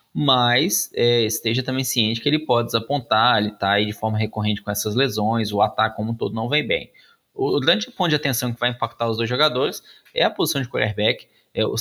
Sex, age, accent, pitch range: male, 20-39, Brazilian, 115-135 Hz